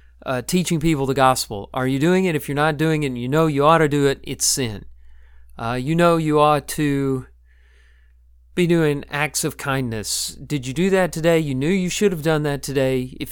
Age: 40-59